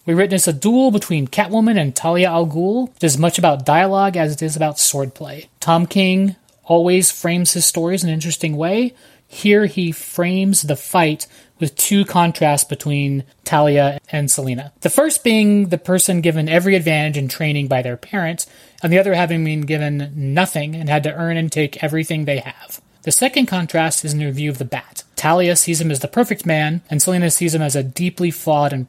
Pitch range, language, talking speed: 150-190 Hz, English, 200 wpm